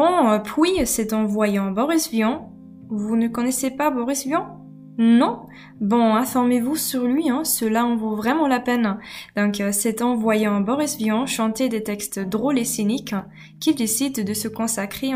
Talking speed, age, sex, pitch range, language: 170 wpm, 20-39, female, 210-260 Hz, French